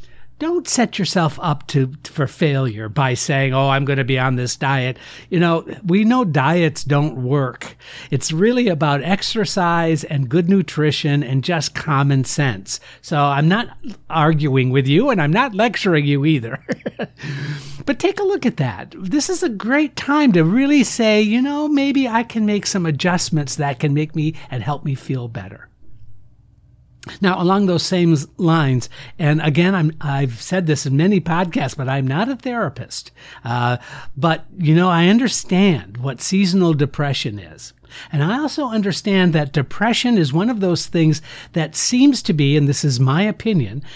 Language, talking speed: English, 175 wpm